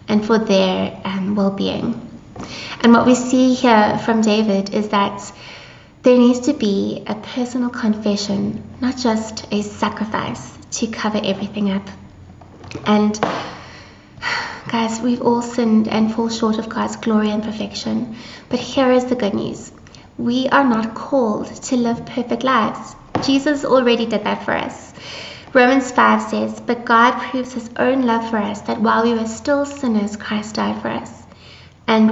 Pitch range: 210-245 Hz